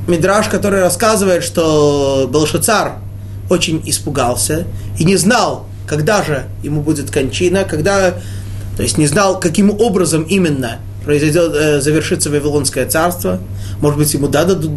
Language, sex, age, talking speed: Russian, male, 30-49, 130 wpm